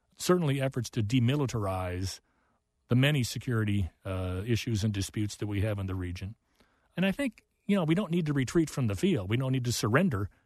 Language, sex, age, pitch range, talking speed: English, male, 40-59, 105-130 Hz, 200 wpm